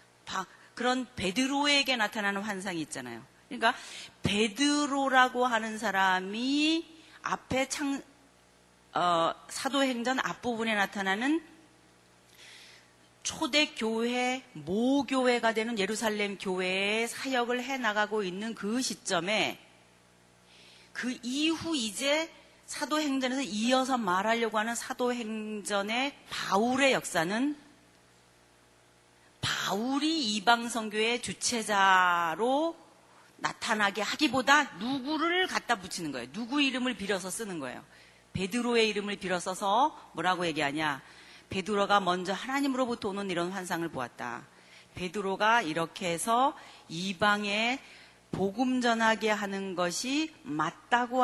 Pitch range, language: 180-255 Hz, Korean